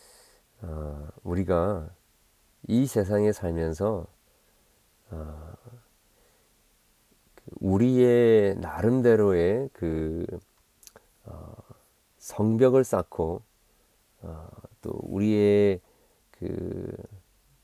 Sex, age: male, 40-59